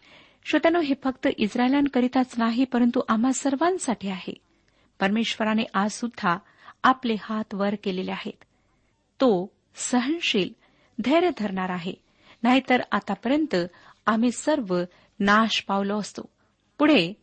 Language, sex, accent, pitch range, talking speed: Marathi, female, native, 200-255 Hz, 105 wpm